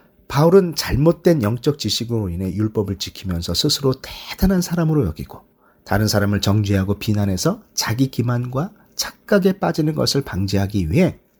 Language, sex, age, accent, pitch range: Korean, male, 40-59, native, 110-180 Hz